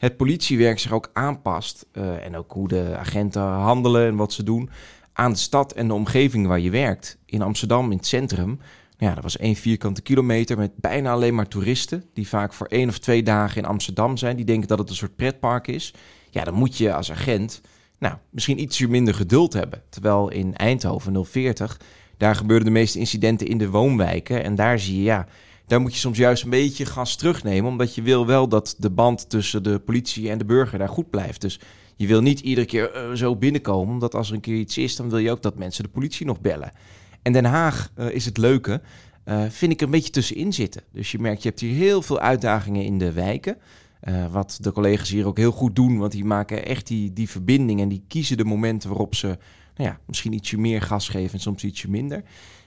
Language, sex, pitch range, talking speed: Dutch, male, 100-125 Hz, 230 wpm